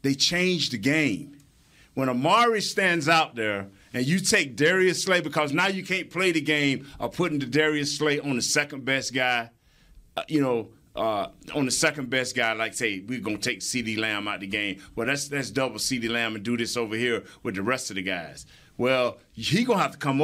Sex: male